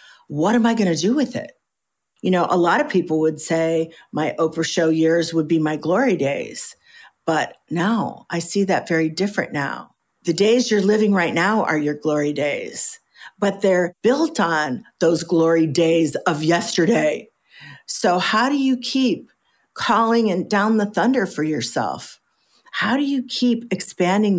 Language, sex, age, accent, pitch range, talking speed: English, female, 50-69, American, 160-210 Hz, 170 wpm